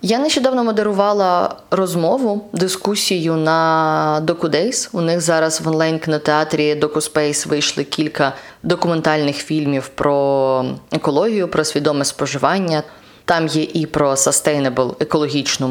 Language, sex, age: Ukrainian, female, 20-39